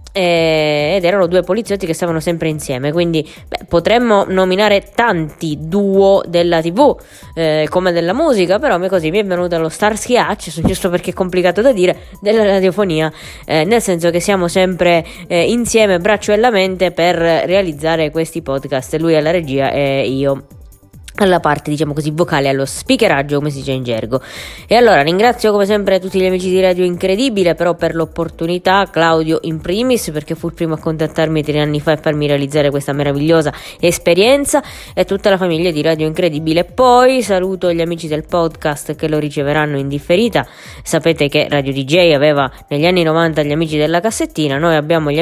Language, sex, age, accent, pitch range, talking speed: Italian, female, 20-39, native, 155-190 Hz, 180 wpm